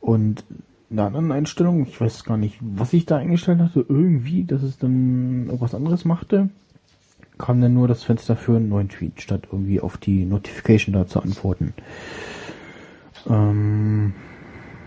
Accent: German